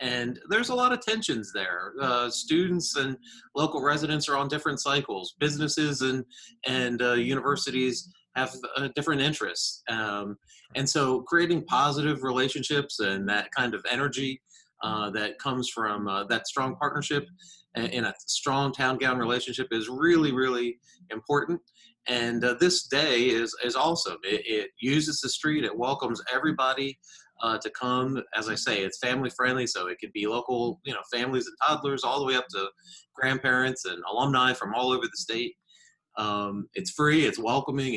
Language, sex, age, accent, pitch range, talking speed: English, male, 30-49, American, 125-150 Hz, 170 wpm